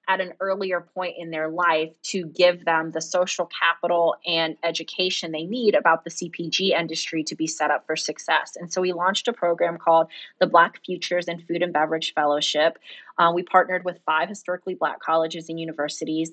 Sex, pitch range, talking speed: female, 160-180 Hz, 190 wpm